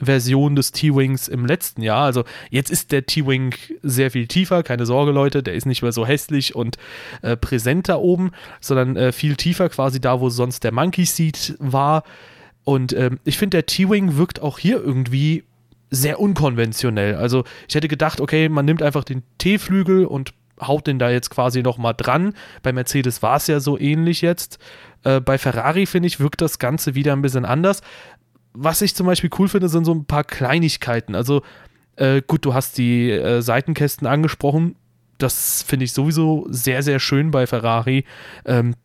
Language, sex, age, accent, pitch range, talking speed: German, male, 30-49, German, 125-160 Hz, 185 wpm